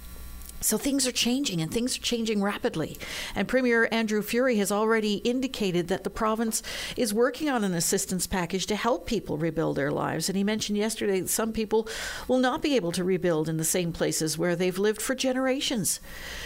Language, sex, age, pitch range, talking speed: English, female, 50-69, 190-235 Hz, 195 wpm